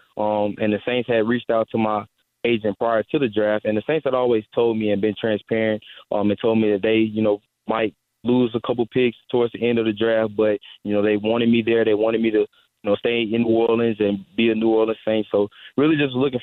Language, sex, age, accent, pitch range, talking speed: English, male, 20-39, American, 105-115 Hz, 250 wpm